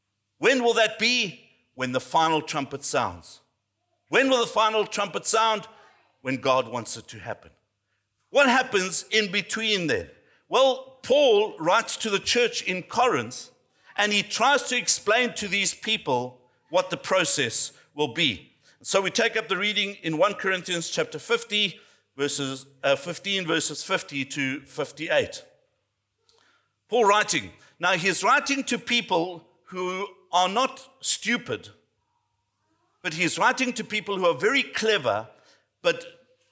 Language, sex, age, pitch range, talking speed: English, male, 50-69, 145-225 Hz, 140 wpm